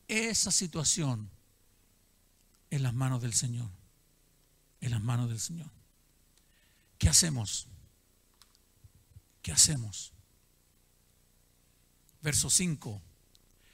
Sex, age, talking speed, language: male, 50-69, 80 wpm, Spanish